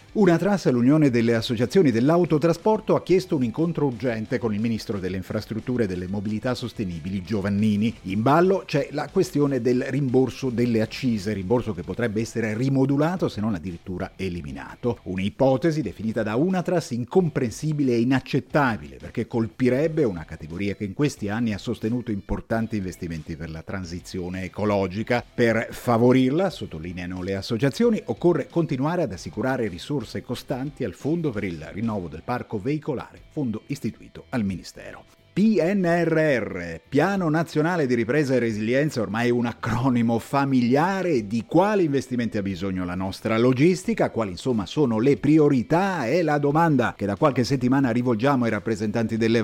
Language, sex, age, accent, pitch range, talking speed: Italian, male, 40-59, native, 105-145 Hz, 145 wpm